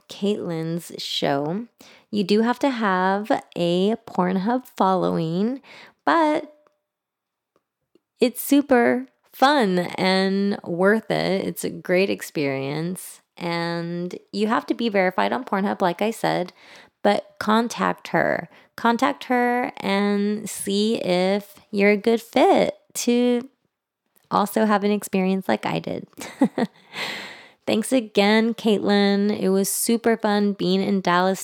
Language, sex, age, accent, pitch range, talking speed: English, female, 20-39, American, 175-220 Hz, 120 wpm